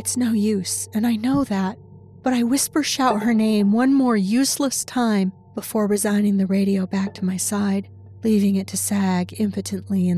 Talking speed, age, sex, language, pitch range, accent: 175 wpm, 40-59, female, English, 185-235 Hz, American